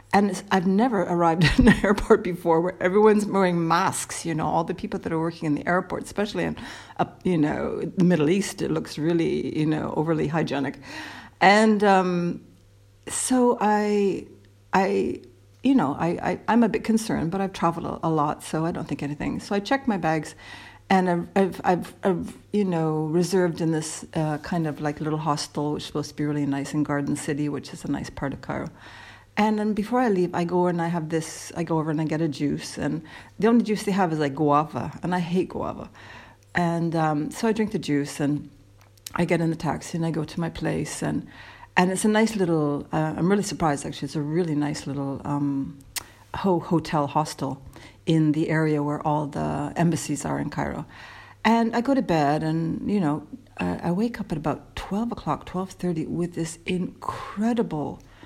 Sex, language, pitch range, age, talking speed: female, English, 150-190 Hz, 60-79, 210 wpm